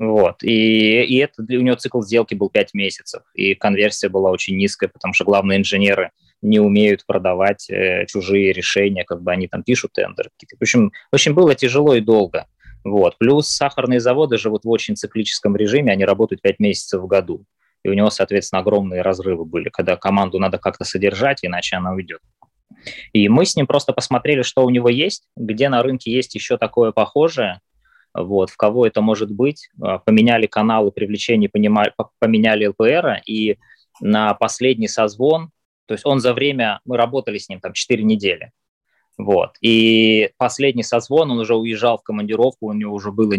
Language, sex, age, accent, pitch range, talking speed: Russian, male, 20-39, native, 100-120 Hz, 175 wpm